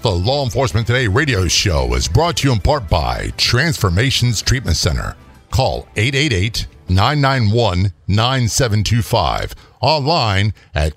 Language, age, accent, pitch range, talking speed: English, 50-69, American, 95-130 Hz, 110 wpm